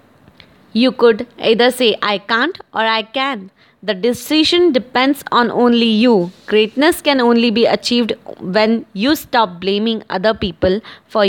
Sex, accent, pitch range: female, Indian, 210-265 Hz